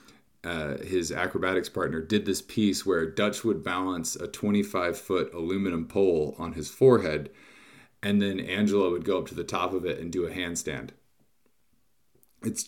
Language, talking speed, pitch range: English, 165 wpm, 85-105 Hz